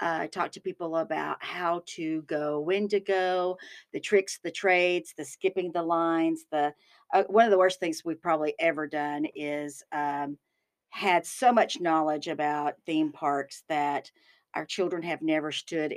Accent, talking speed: American, 175 wpm